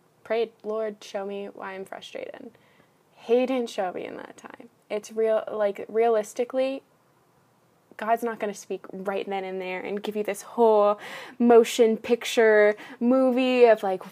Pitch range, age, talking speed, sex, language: 195-225 Hz, 10-29, 155 wpm, female, English